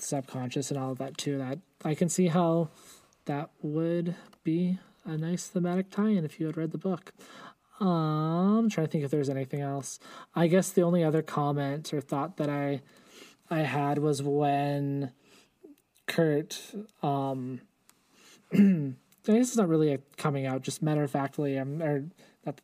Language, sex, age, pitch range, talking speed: English, male, 20-39, 140-165 Hz, 175 wpm